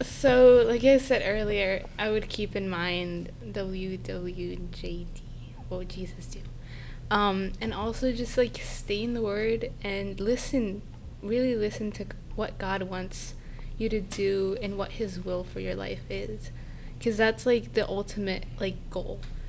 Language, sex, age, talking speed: English, female, 10-29, 155 wpm